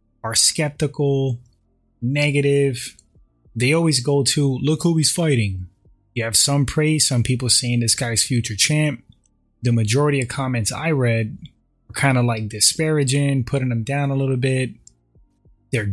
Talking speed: 150 wpm